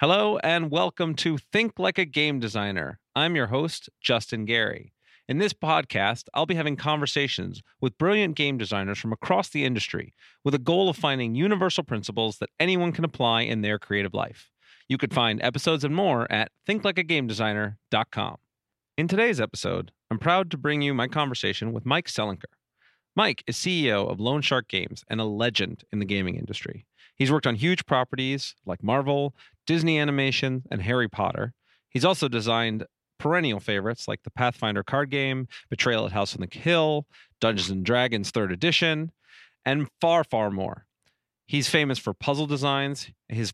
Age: 40-59